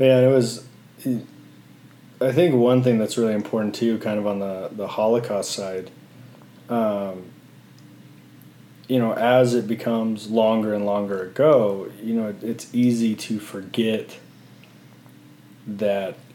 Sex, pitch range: male, 100-120 Hz